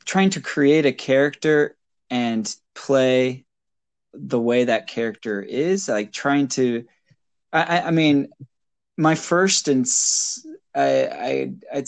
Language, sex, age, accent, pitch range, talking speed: English, male, 20-39, American, 110-150 Hz, 115 wpm